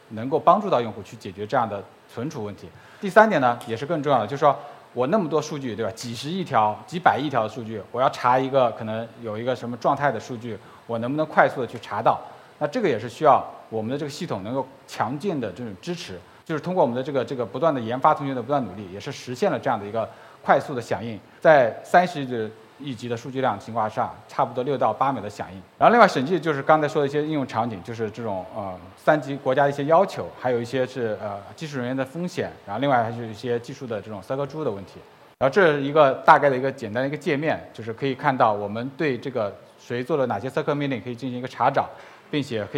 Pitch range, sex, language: 115-145 Hz, male, Chinese